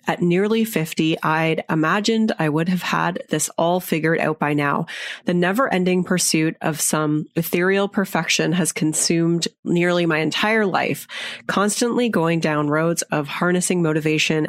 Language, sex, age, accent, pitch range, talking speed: English, female, 30-49, American, 160-190 Hz, 150 wpm